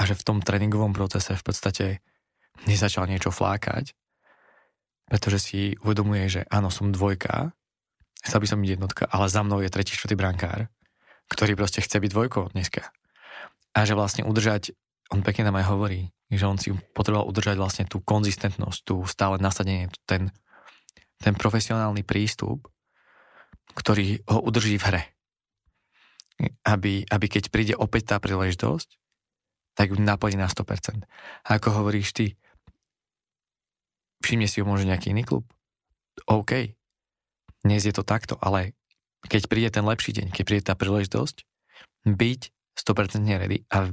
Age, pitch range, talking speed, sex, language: 20-39, 95-105 Hz, 145 wpm, male, Slovak